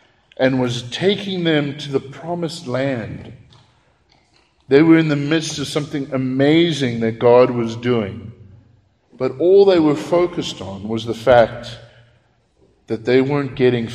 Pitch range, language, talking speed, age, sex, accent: 110-130 Hz, English, 140 wpm, 50-69, male, American